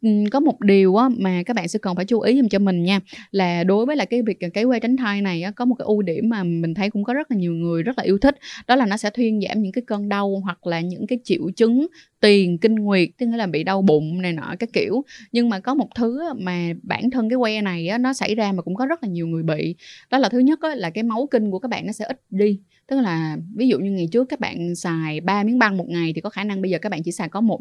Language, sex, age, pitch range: Vietnamese, female, 20-39, 185-240 Hz